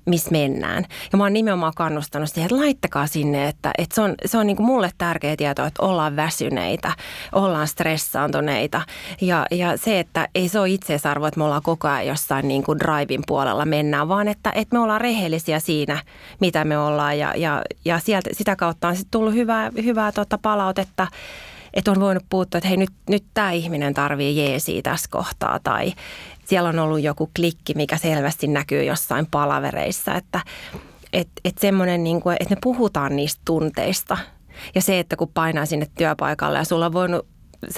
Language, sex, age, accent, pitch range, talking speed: Finnish, female, 20-39, native, 150-195 Hz, 180 wpm